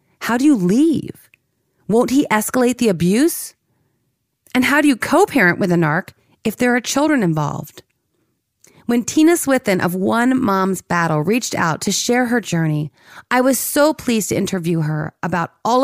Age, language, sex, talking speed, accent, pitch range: 30-49, English, female, 165 wpm, American, 175-245 Hz